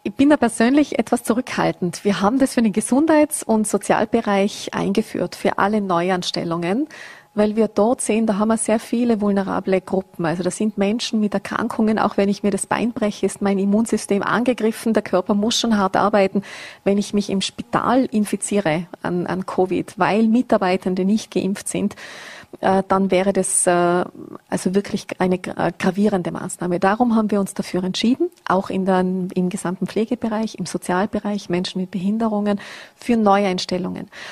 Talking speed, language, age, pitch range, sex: 165 wpm, German, 30-49, 185-220 Hz, female